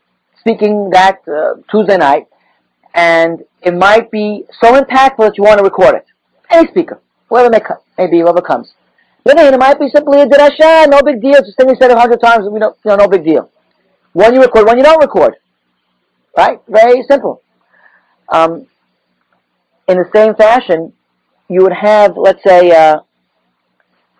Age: 40-59